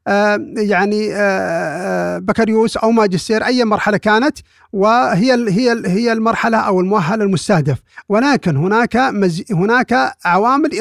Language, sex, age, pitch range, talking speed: Arabic, male, 50-69, 190-230 Hz, 100 wpm